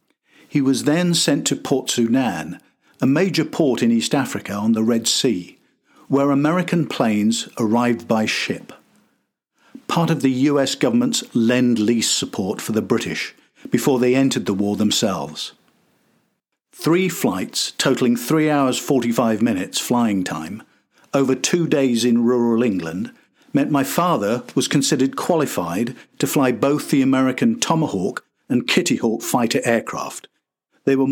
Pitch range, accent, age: 115-150 Hz, British, 50-69